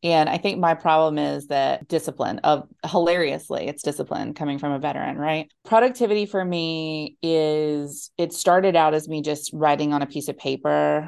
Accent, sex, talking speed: American, female, 180 wpm